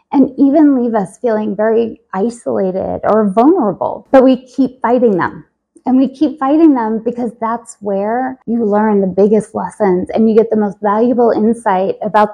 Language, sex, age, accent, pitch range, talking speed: English, female, 20-39, American, 205-260 Hz, 170 wpm